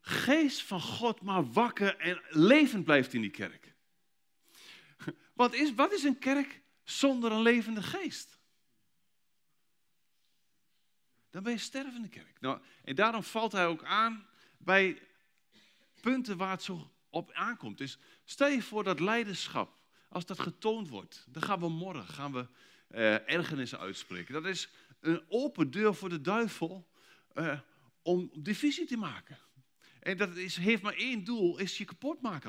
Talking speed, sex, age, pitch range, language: 155 wpm, male, 40-59, 165-225 Hz, Dutch